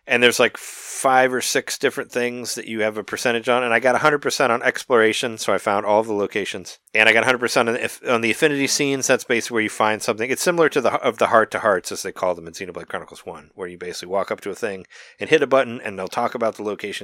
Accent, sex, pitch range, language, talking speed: American, male, 100-120 Hz, English, 255 wpm